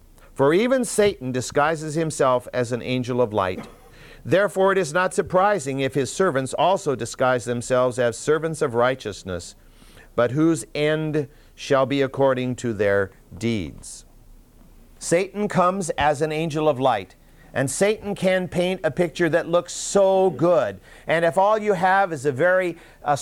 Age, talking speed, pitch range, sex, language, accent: 50-69, 155 wpm, 120-185 Hz, male, English, American